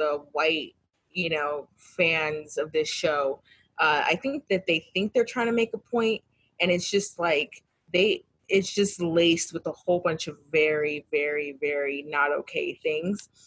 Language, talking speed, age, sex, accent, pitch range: English, 175 wpm, 20-39, female, American, 175-220 Hz